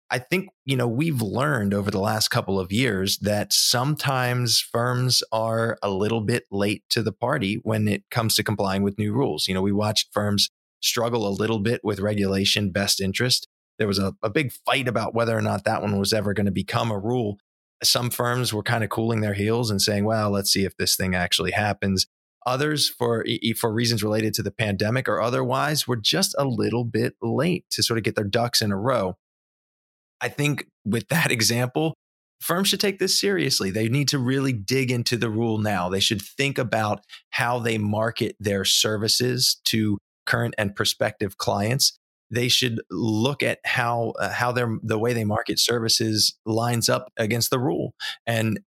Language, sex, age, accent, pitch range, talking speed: English, male, 20-39, American, 105-120 Hz, 195 wpm